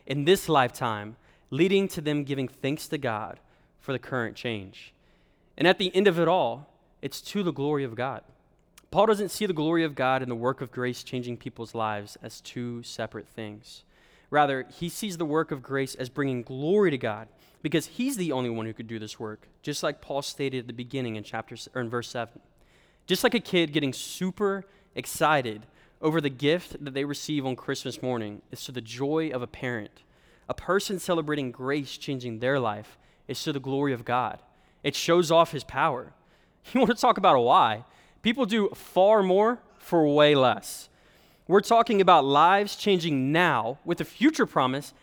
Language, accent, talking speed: English, American, 195 wpm